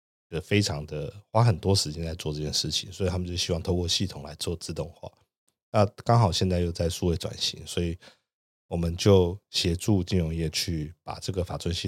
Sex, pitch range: male, 80-100 Hz